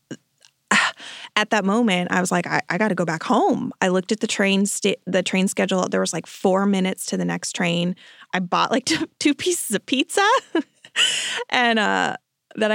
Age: 20-39